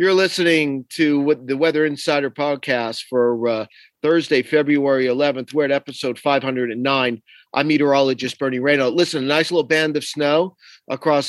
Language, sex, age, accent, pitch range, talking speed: English, male, 40-59, American, 145-170 Hz, 150 wpm